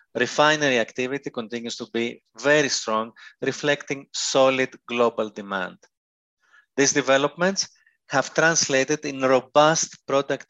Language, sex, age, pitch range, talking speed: English, male, 30-49, 115-140 Hz, 105 wpm